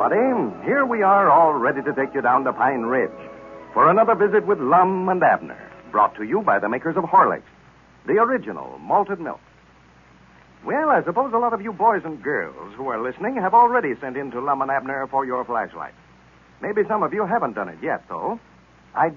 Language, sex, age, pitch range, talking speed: English, male, 60-79, 125-205 Hz, 205 wpm